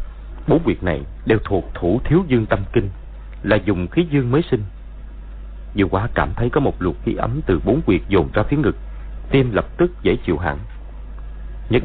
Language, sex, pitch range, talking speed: Vietnamese, male, 70-105 Hz, 200 wpm